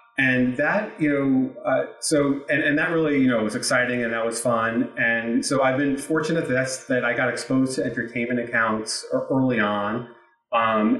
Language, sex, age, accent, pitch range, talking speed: English, male, 30-49, American, 110-130 Hz, 190 wpm